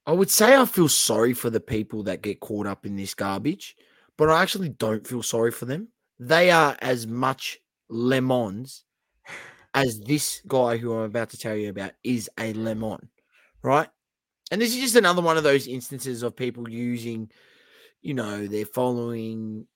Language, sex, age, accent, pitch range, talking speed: English, male, 20-39, Australian, 105-130 Hz, 180 wpm